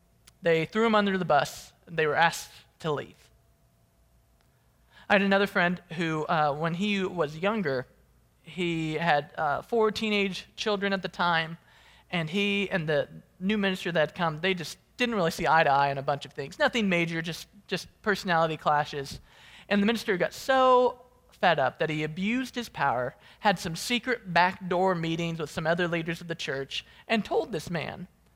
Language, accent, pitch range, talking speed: English, American, 155-200 Hz, 185 wpm